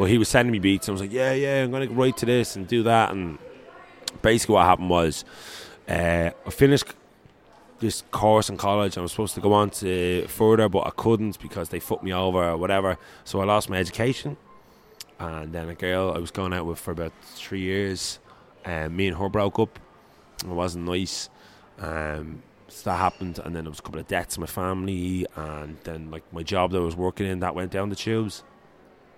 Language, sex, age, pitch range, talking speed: English, male, 20-39, 85-100 Hz, 220 wpm